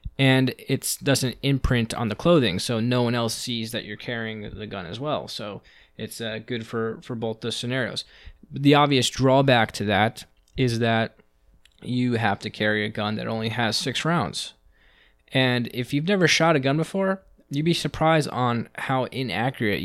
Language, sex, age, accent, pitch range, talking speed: English, male, 20-39, American, 115-140 Hz, 180 wpm